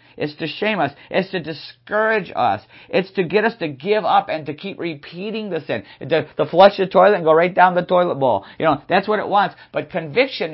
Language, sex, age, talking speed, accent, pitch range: English, male, 50-69, 235 wpm, American, 150-225 Hz